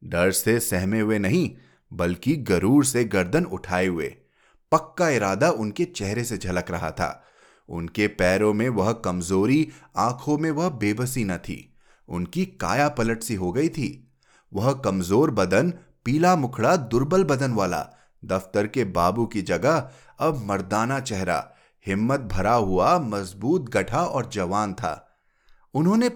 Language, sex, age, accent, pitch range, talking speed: Hindi, male, 30-49, native, 95-150 Hz, 140 wpm